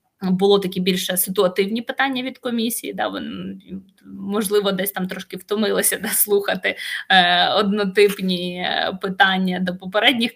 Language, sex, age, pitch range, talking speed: Ukrainian, female, 20-39, 185-210 Hz, 120 wpm